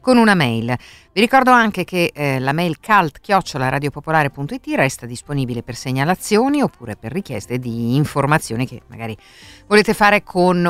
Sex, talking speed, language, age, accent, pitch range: female, 140 wpm, Italian, 50-69, native, 125-170 Hz